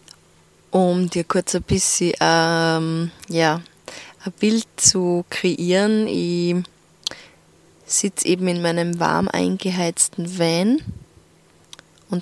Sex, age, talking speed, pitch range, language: female, 20-39, 95 wpm, 165-190 Hz, German